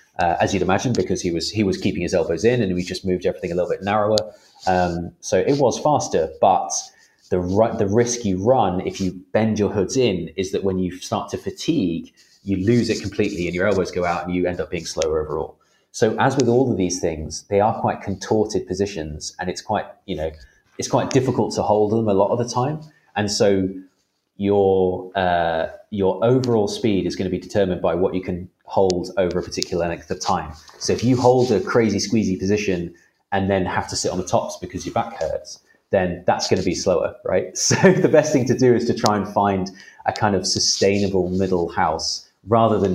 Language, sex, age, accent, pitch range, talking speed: English, male, 30-49, British, 90-120 Hz, 220 wpm